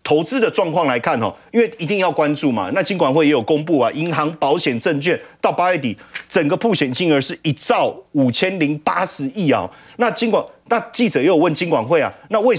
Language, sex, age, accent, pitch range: Chinese, male, 30-49, native, 150-230 Hz